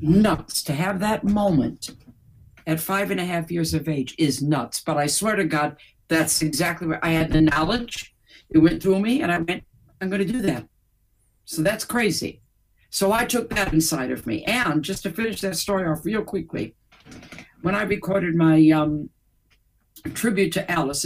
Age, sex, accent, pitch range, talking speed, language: 60-79, female, American, 145-175 Hz, 190 wpm, English